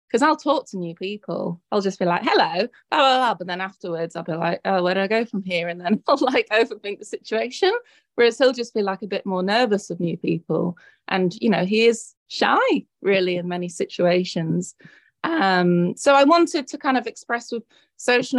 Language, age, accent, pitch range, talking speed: English, 20-39, British, 185-230 Hz, 215 wpm